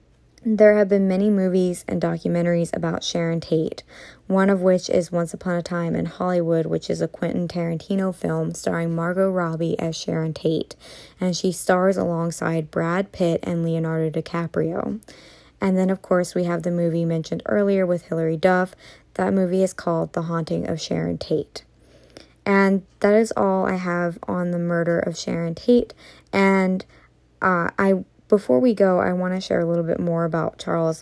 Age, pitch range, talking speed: 20-39, 170-195 Hz, 175 wpm